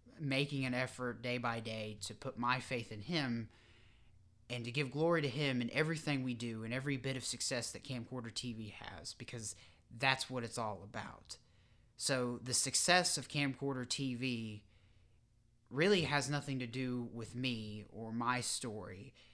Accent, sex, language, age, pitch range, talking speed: American, male, English, 30-49, 115-145 Hz, 165 wpm